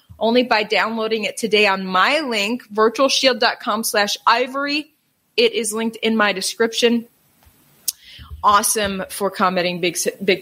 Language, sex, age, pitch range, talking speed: English, female, 30-49, 195-260 Hz, 125 wpm